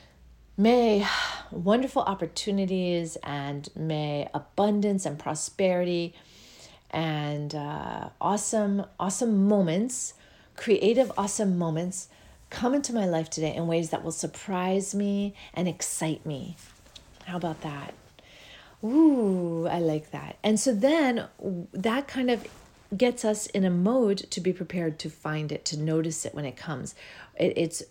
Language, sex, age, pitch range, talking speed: English, female, 40-59, 160-215 Hz, 135 wpm